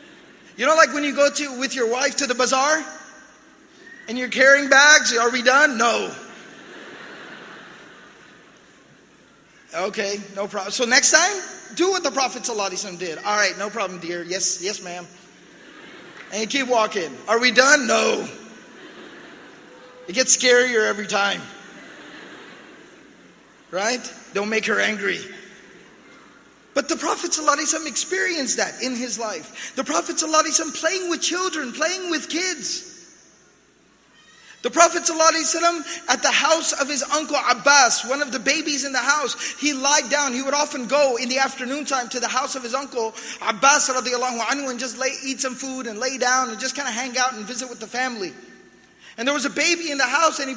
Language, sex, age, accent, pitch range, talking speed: English, male, 30-49, American, 245-300 Hz, 165 wpm